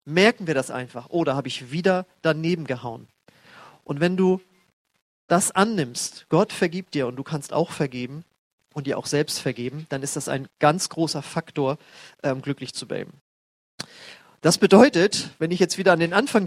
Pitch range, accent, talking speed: 140-180 Hz, German, 180 wpm